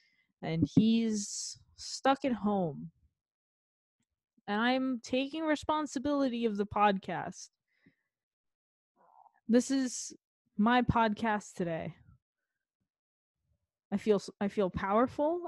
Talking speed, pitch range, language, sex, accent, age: 80 wpm, 180-225 Hz, English, female, American, 20-39